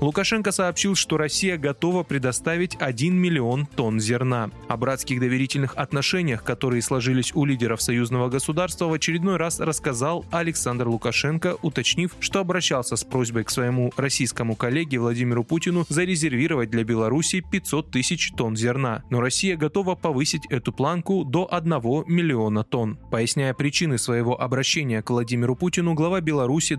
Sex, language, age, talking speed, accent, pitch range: male, Russian, 20-39, 140 wpm, native, 125-170 Hz